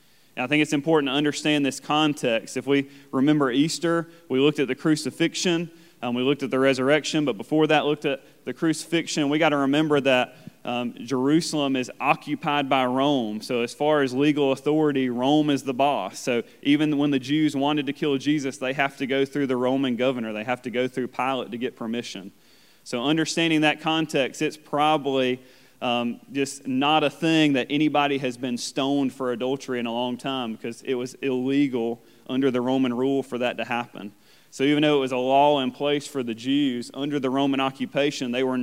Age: 30-49